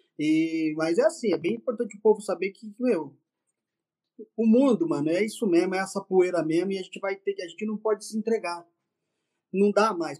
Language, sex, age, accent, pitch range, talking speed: Portuguese, male, 20-39, Brazilian, 170-225 Hz, 210 wpm